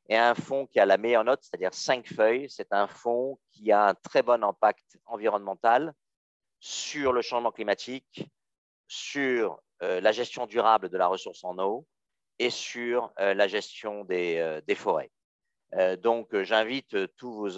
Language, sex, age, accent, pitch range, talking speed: French, male, 50-69, French, 90-130 Hz, 155 wpm